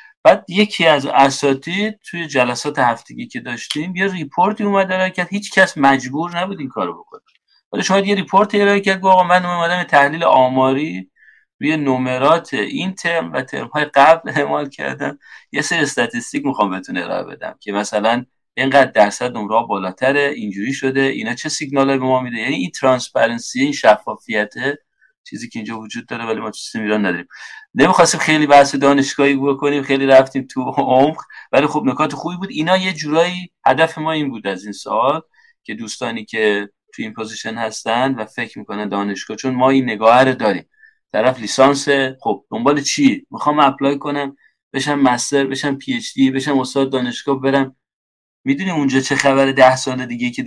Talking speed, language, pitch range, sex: 170 wpm, Persian, 130-170 Hz, male